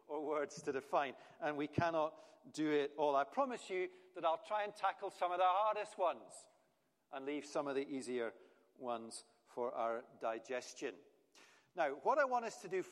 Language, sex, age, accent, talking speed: English, male, 50-69, British, 185 wpm